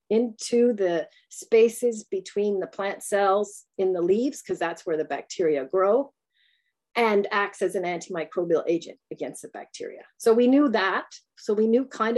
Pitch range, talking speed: 185-285 Hz, 165 wpm